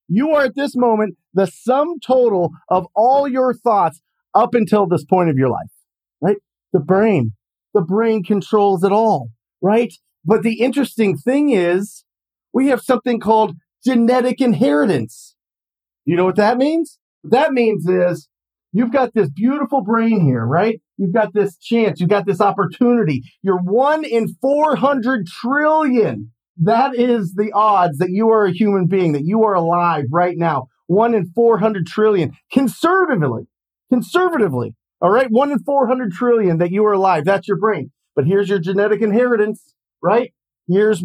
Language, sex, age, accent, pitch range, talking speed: English, male, 40-59, American, 175-230 Hz, 160 wpm